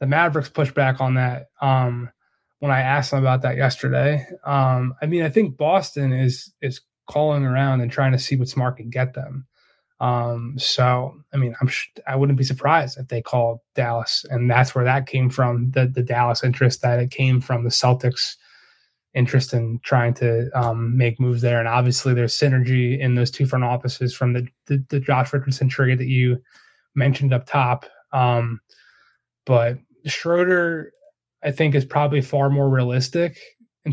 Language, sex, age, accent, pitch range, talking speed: English, male, 20-39, American, 125-145 Hz, 185 wpm